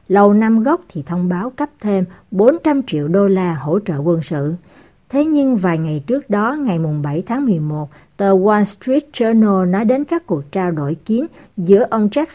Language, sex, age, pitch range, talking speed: Vietnamese, female, 60-79, 180-245 Hz, 200 wpm